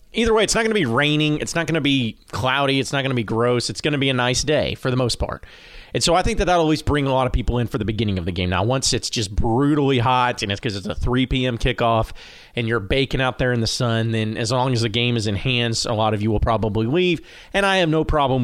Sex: male